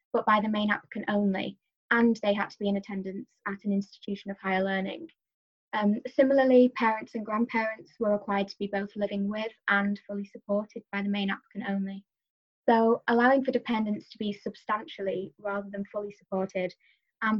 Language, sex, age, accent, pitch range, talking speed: English, female, 10-29, British, 200-225 Hz, 175 wpm